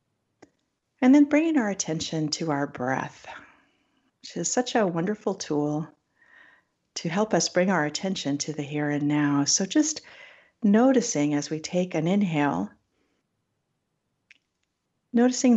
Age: 50-69